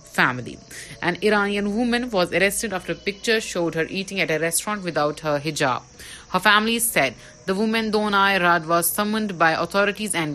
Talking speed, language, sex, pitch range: 170 wpm, Urdu, female, 155-195 Hz